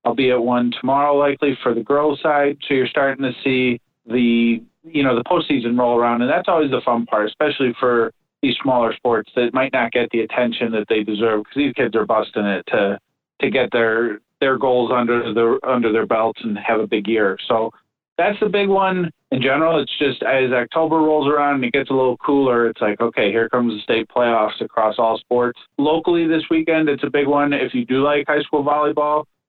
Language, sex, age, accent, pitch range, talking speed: English, male, 30-49, American, 115-145 Hz, 220 wpm